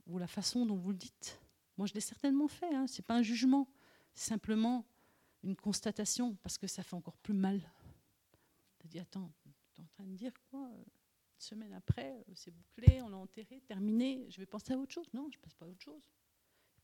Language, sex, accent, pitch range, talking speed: French, female, French, 175-225 Hz, 225 wpm